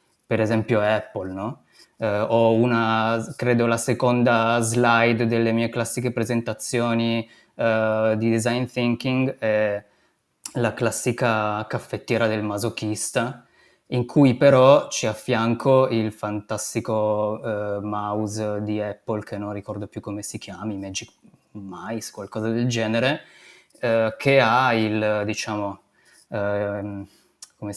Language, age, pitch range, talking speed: Italian, 20-39, 105-125 Hz, 110 wpm